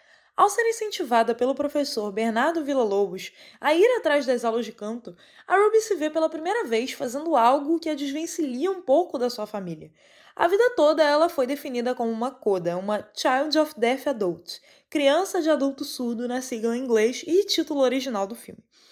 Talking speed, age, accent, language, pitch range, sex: 185 wpm, 20-39, Brazilian, Portuguese, 235-330 Hz, female